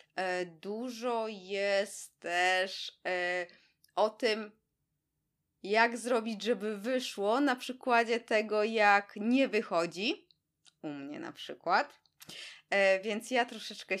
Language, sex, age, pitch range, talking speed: Polish, female, 20-39, 175-235 Hz, 95 wpm